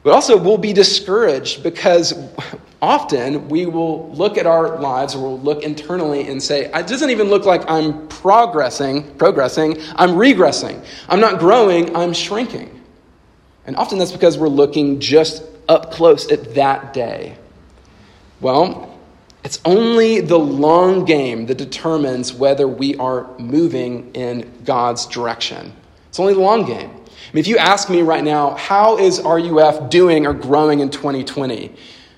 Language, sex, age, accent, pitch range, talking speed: English, male, 40-59, American, 140-175 Hz, 150 wpm